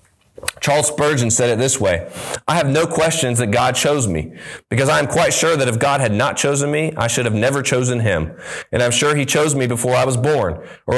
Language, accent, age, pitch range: English, American, 30-49, 115-140 Hz